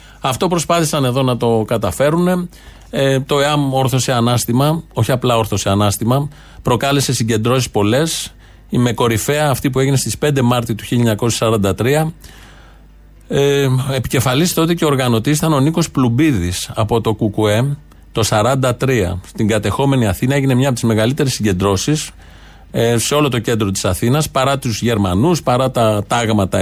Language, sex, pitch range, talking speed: Greek, male, 115-150 Hz, 140 wpm